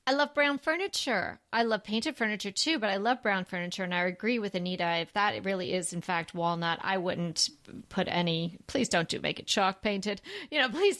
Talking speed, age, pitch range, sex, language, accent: 220 wpm, 30-49, 190-245 Hz, female, English, American